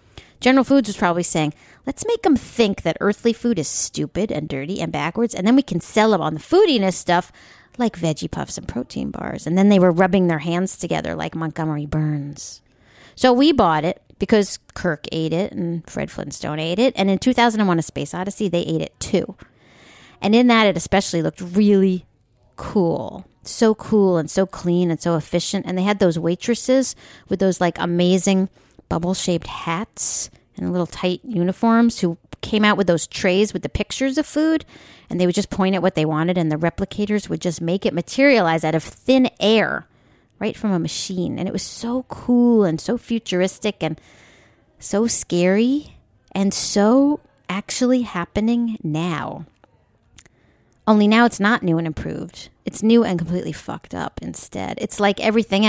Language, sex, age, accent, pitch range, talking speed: English, female, 40-59, American, 165-220 Hz, 180 wpm